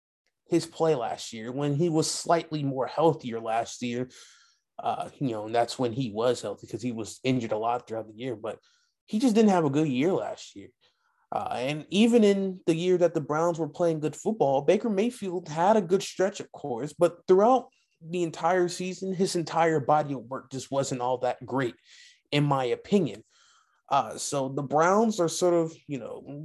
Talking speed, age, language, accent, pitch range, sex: 200 wpm, 20-39, English, American, 120-165 Hz, male